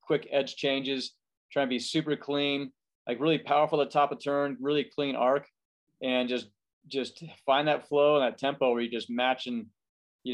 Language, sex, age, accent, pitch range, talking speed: English, male, 30-49, American, 120-145 Hz, 190 wpm